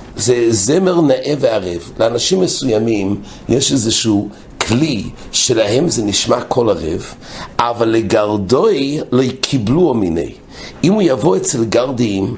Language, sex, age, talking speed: English, male, 60-79, 115 wpm